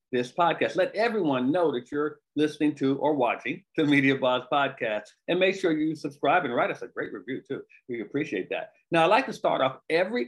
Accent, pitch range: American, 125-155 Hz